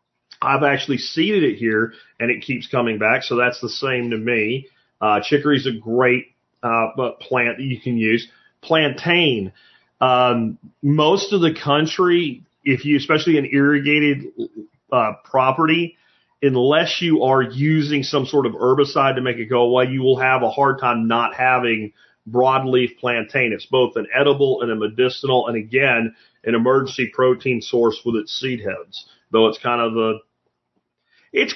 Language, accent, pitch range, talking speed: English, American, 120-155 Hz, 165 wpm